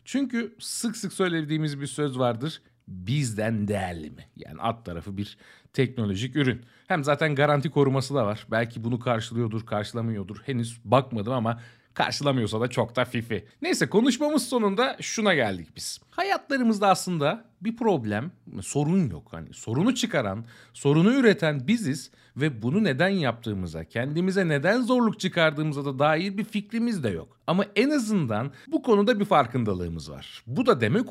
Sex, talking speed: male, 150 wpm